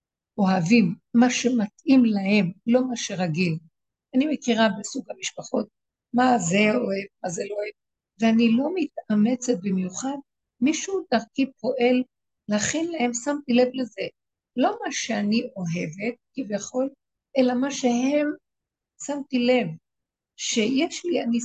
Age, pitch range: 60-79, 195-265 Hz